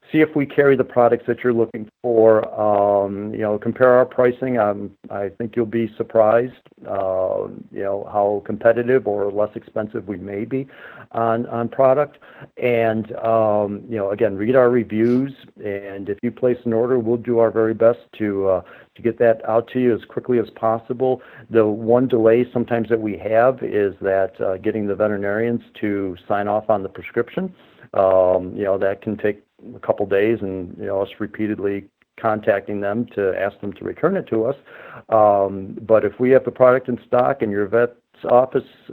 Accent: American